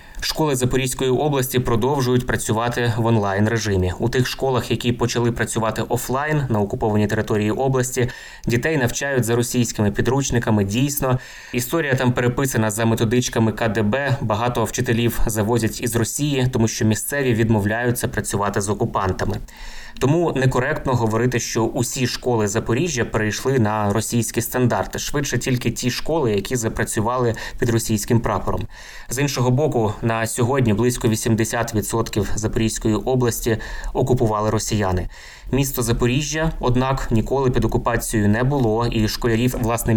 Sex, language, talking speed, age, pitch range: male, Ukrainian, 125 wpm, 20-39, 110-125 Hz